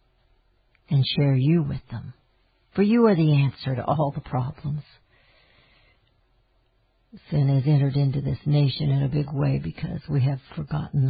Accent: American